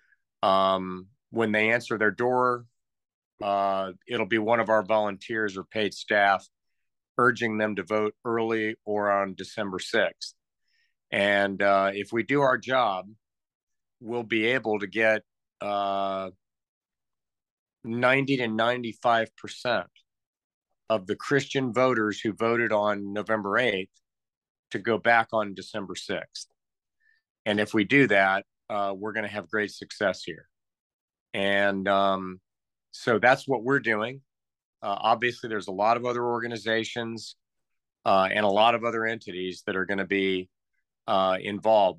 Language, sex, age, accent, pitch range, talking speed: English, male, 50-69, American, 100-120 Hz, 140 wpm